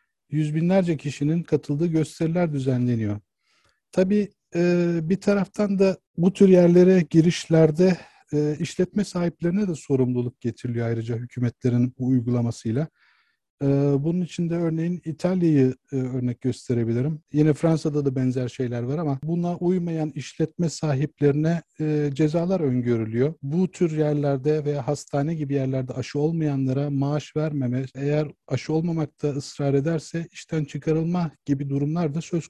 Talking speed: 120 wpm